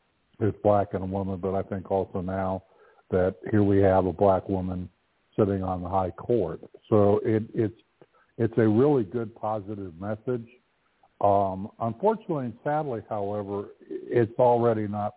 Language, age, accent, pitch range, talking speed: English, 60-79, American, 90-110 Hz, 150 wpm